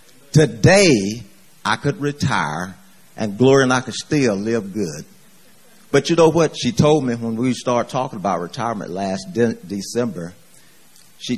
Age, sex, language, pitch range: 40-59, male, English, 100-145 Hz